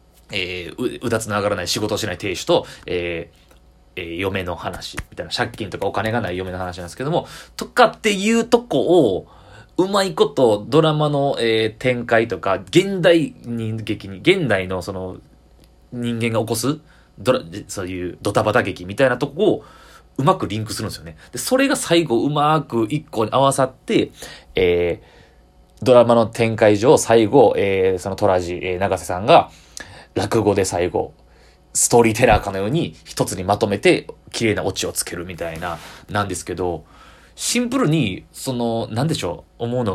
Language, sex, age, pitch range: Japanese, male, 20-39, 90-145 Hz